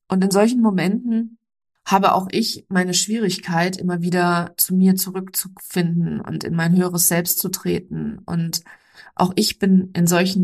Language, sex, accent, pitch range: German, female, German, 170-195 Hz